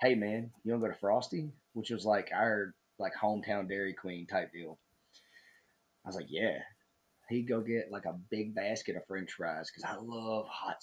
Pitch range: 95-115 Hz